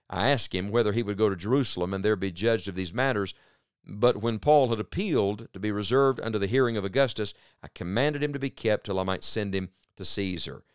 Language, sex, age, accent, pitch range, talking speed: English, male, 50-69, American, 100-135 Hz, 235 wpm